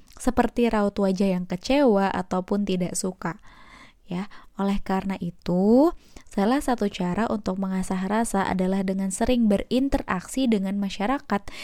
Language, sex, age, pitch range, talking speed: Indonesian, female, 20-39, 190-230 Hz, 125 wpm